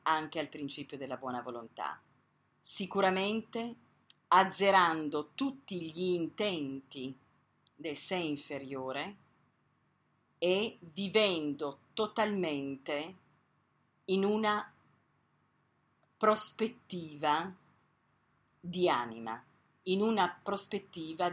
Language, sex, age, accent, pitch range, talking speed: Italian, female, 40-59, native, 145-190 Hz, 70 wpm